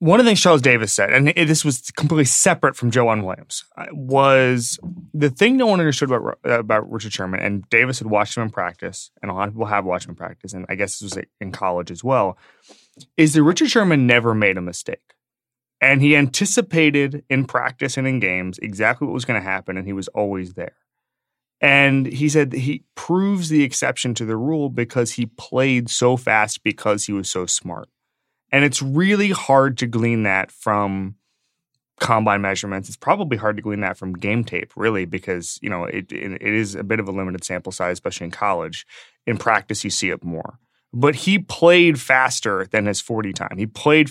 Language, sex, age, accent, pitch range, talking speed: English, male, 20-39, American, 100-135 Hz, 205 wpm